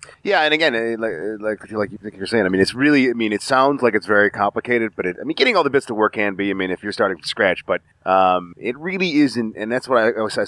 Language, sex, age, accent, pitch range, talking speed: English, male, 30-49, American, 90-115 Hz, 275 wpm